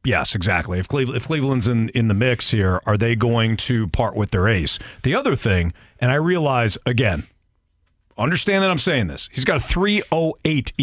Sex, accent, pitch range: male, American, 100-150 Hz